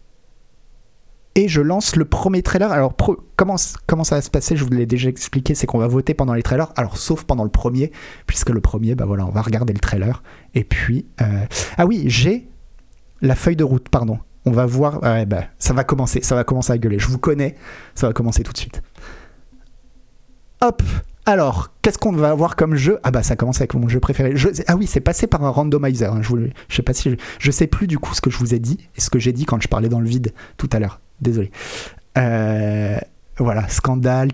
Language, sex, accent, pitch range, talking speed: French, male, French, 115-135 Hz, 230 wpm